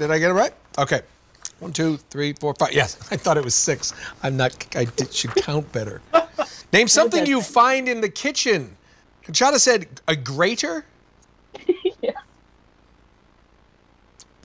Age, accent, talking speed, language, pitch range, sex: 40-59, American, 145 wpm, English, 160-240 Hz, male